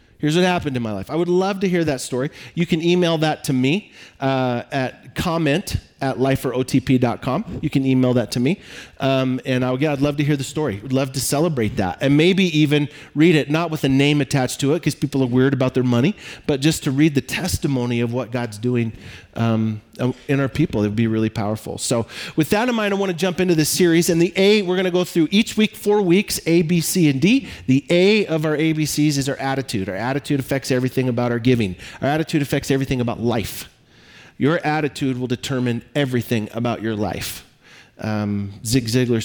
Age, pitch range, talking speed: 40-59, 115-155 Hz, 220 wpm